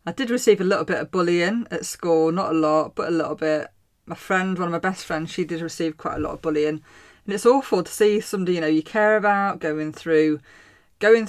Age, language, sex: 20-39, English, female